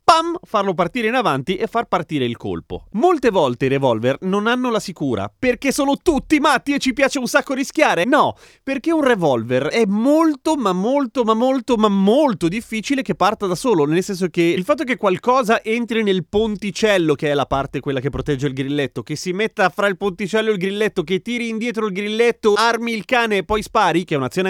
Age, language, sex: 30-49, Italian, male